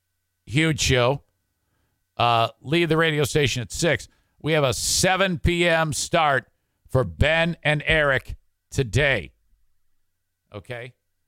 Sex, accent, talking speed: male, American, 110 wpm